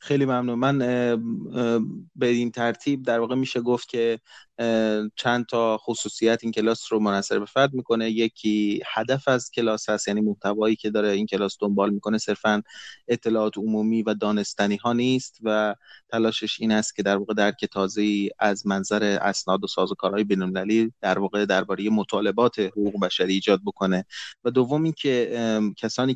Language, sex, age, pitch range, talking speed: Persian, male, 30-49, 105-120 Hz, 155 wpm